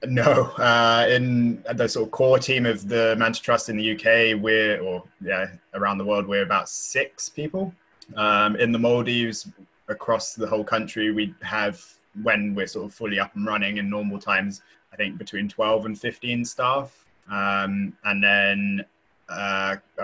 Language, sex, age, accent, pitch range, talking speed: English, male, 20-39, British, 100-115 Hz, 170 wpm